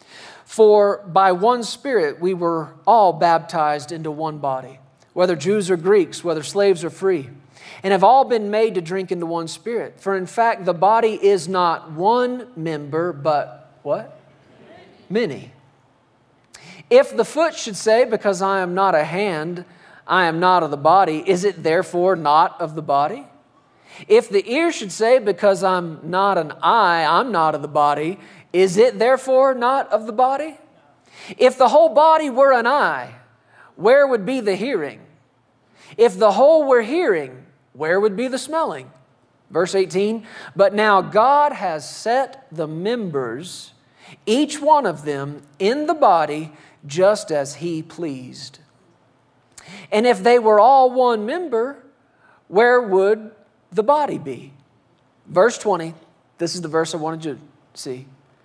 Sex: male